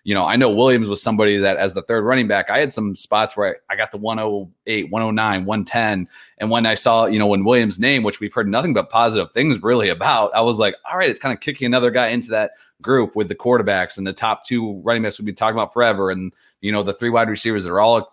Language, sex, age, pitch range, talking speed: English, male, 30-49, 100-115 Hz, 270 wpm